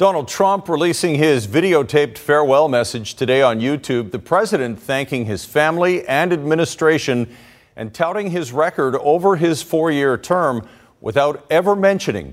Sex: male